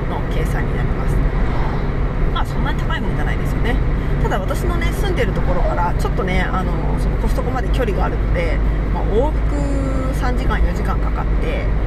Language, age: Japanese, 20-39